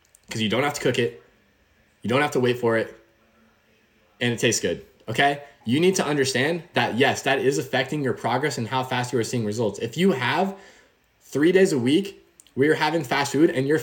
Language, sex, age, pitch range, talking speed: English, male, 20-39, 125-160 Hz, 220 wpm